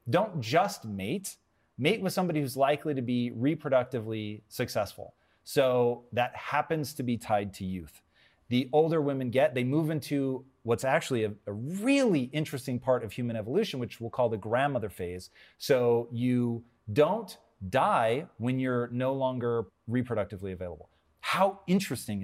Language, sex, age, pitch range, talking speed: English, male, 30-49, 115-155 Hz, 150 wpm